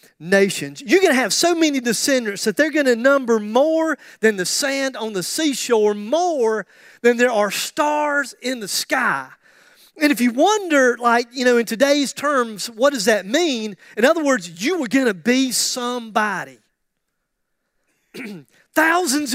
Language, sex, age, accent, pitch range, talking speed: English, male, 40-59, American, 210-290 Hz, 160 wpm